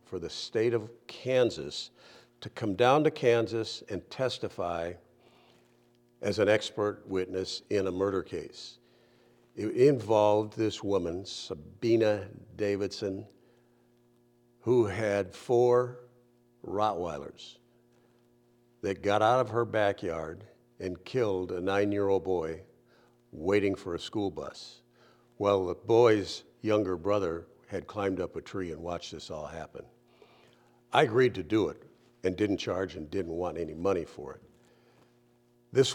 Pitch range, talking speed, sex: 95-120 Hz, 130 wpm, male